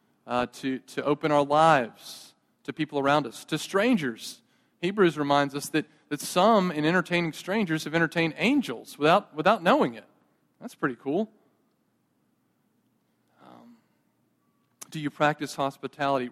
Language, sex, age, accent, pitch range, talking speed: English, male, 40-59, American, 130-155 Hz, 130 wpm